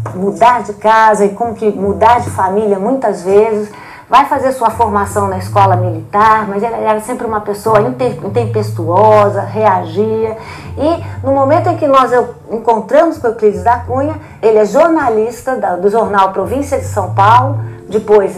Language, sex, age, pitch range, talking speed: Portuguese, female, 50-69, 205-250 Hz, 155 wpm